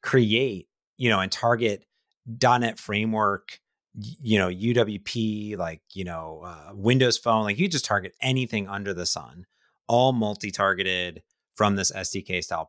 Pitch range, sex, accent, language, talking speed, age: 95-125 Hz, male, American, English, 135 wpm, 30-49